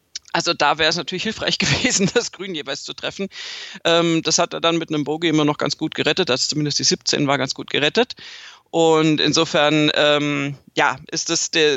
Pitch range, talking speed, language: 155-195 Hz, 195 wpm, German